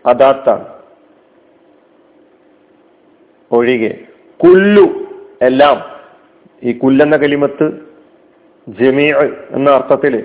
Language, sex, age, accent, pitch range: Malayalam, male, 40-59, native, 130-170 Hz